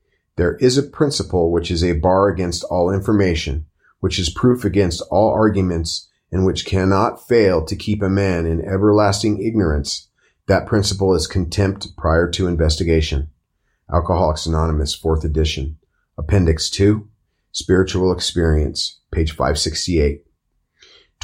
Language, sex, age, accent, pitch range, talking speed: English, male, 40-59, American, 85-105 Hz, 125 wpm